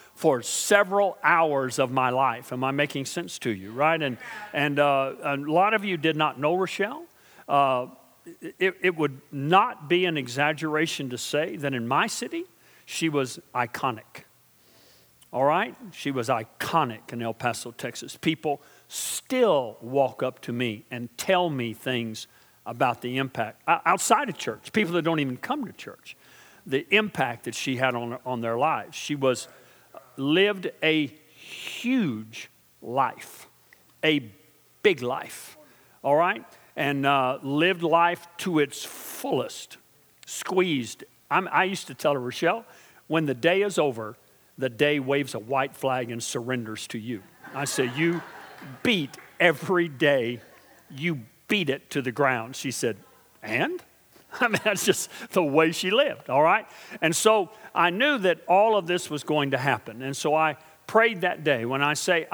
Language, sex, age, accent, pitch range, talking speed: English, male, 50-69, American, 130-175 Hz, 165 wpm